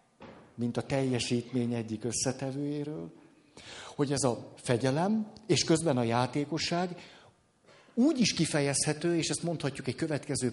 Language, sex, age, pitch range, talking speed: Hungarian, male, 50-69, 125-170 Hz, 120 wpm